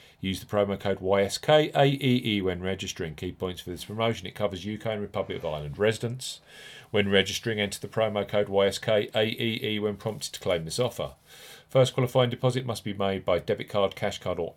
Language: English